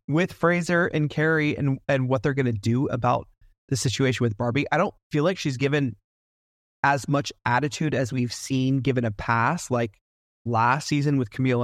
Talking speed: 185 wpm